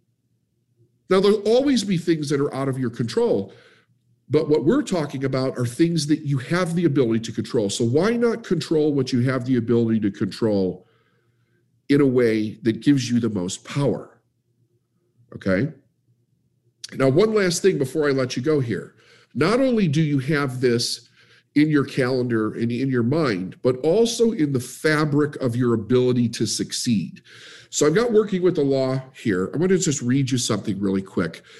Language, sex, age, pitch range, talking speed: English, male, 50-69, 120-155 Hz, 185 wpm